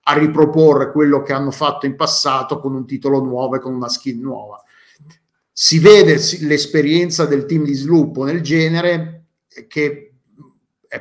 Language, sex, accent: Italian, male, native